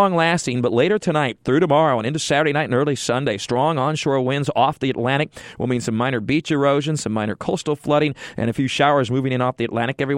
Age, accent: 40-59, American